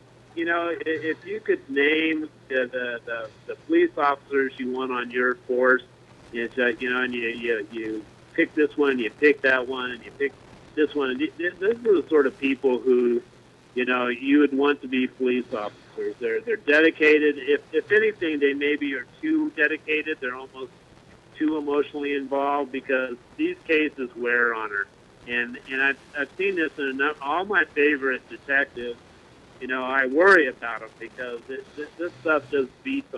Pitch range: 125-150 Hz